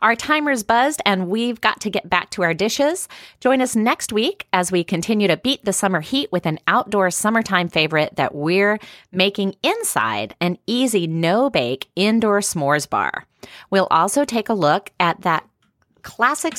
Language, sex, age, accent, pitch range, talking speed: English, female, 30-49, American, 155-225 Hz, 170 wpm